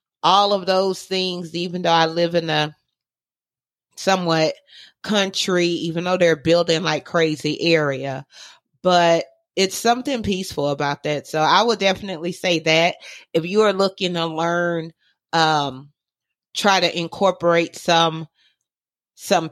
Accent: American